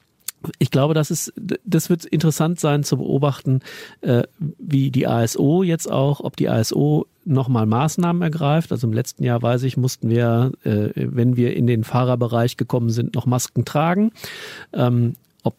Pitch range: 120-145 Hz